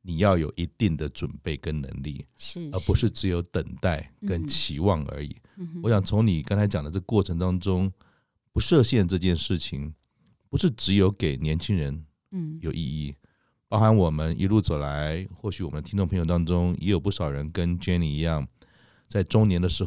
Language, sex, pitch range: Chinese, male, 80-105 Hz